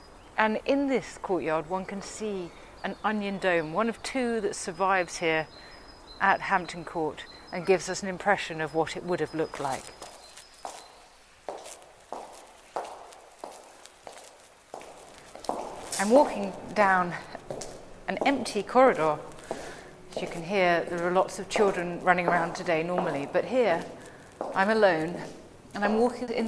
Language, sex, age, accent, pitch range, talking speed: English, female, 40-59, British, 175-210 Hz, 130 wpm